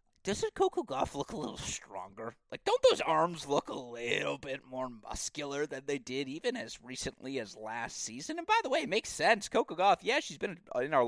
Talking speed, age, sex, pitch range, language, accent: 215 wpm, 30-49, male, 120-160 Hz, English, American